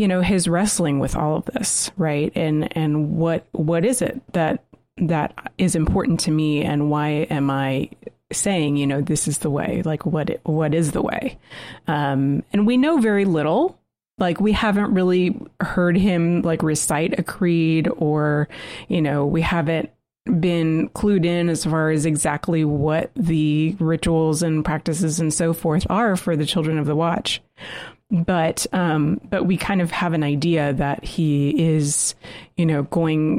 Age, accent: 30-49, American